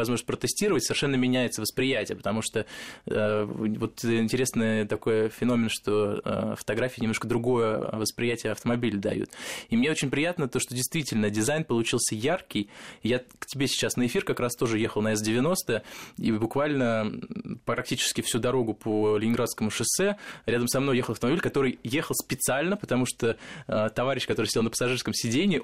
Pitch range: 110-130 Hz